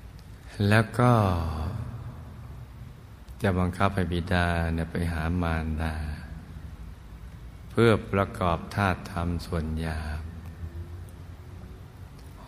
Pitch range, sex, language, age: 80-90 Hz, male, Thai, 60-79